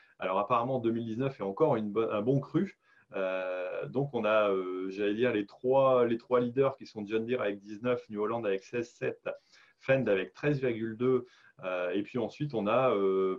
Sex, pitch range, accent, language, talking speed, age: male, 100-135 Hz, French, French, 190 wpm, 30-49